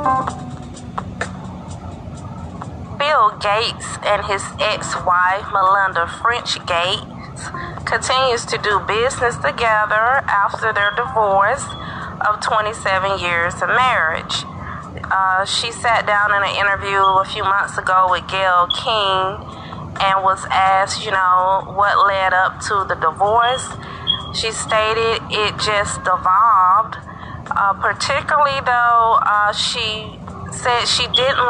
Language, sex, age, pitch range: English, female, 30-49, 190-225 Hz